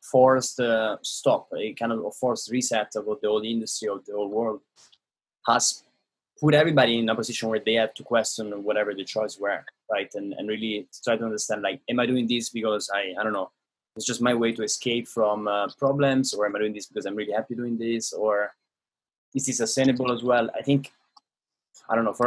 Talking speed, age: 215 wpm, 20-39